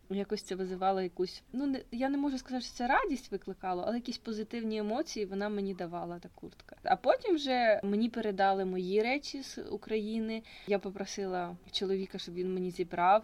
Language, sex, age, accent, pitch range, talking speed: Ukrainian, female, 20-39, native, 185-215 Hz, 175 wpm